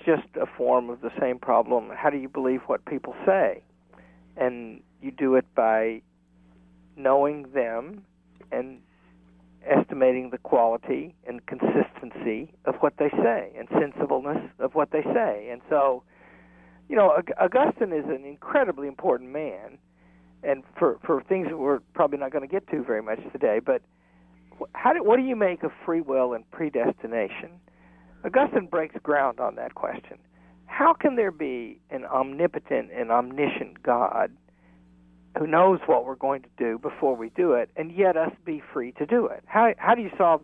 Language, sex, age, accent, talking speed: English, male, 50-69, American, 170 wpm